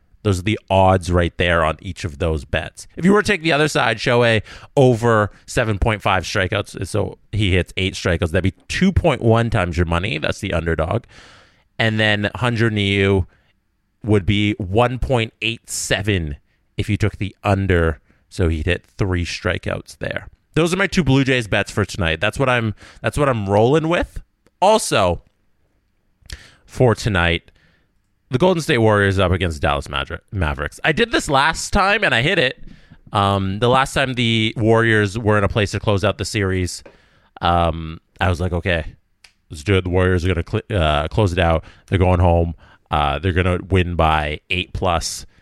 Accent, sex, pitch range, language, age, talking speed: American, male, 85-110 Hz, English, 30-49, 190 wpm